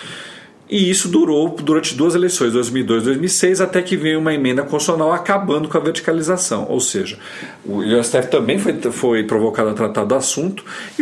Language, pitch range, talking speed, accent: Portuguese, 120-185 Hz, 175 wpm, Brazilian